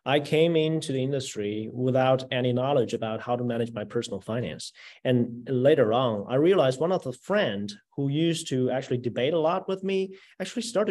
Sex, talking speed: male, 195 wpm